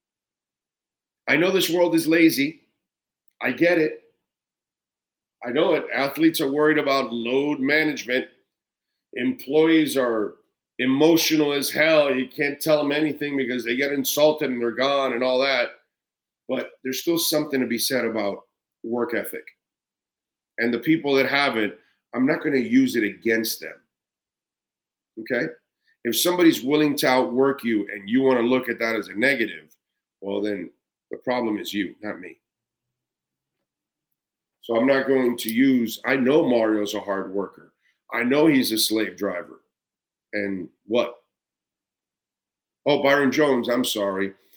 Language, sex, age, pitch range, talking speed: English, male, 40-59, 115-150 Hz, 150 wpm